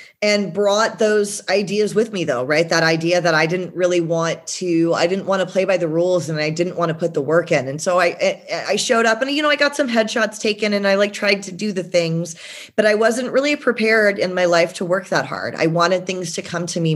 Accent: American